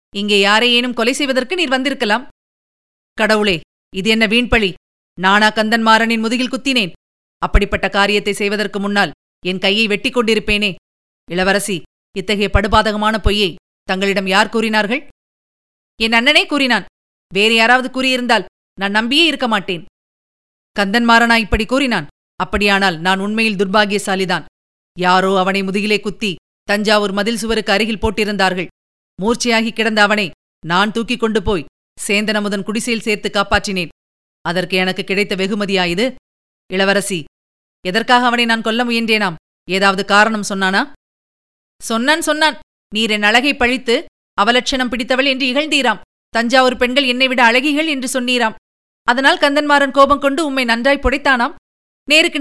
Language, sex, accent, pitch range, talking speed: Tamil, female, native, 200-255 Hz, 115 wpm